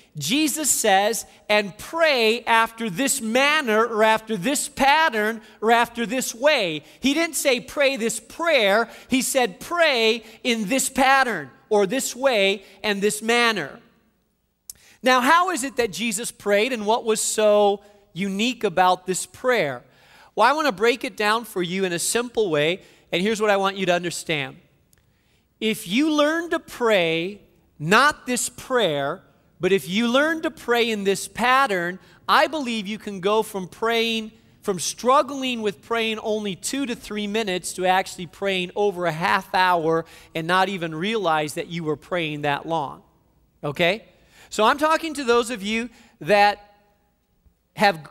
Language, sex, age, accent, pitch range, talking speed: English, male, 40-59, American, 185-245 Hz, 160 wpm